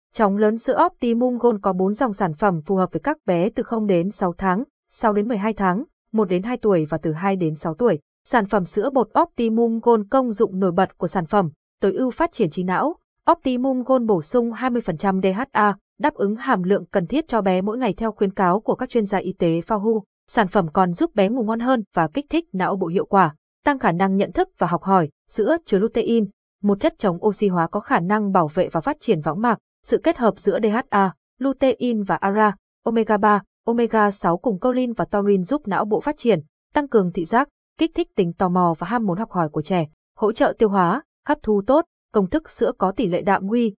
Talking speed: 235 wpm